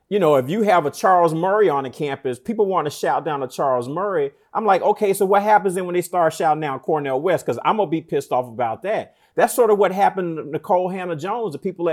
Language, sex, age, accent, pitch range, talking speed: English, male, 30-49, American, 155-205 Hz, 265 wpm